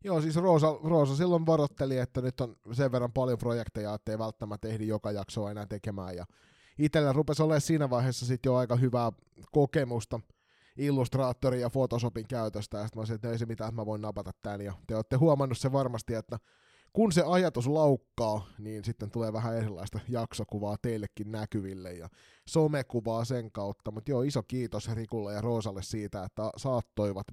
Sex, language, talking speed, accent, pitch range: male, Finnish, 175 wpm, native, 105-130 Hz